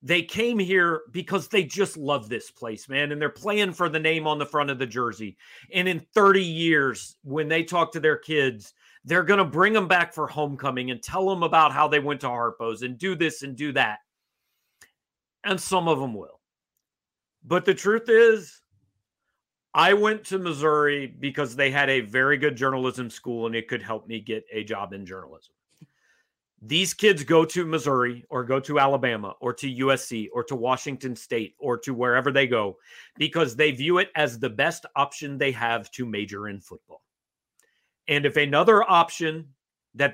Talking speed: 190 wpm